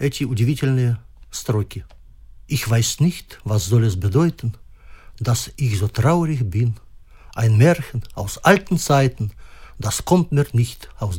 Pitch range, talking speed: 105-145 Hz, 135 wpm